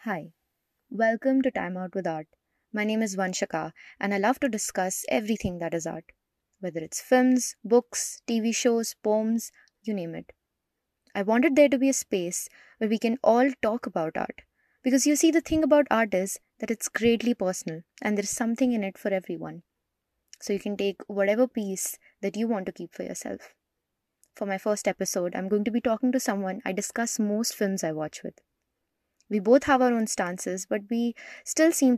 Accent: Indian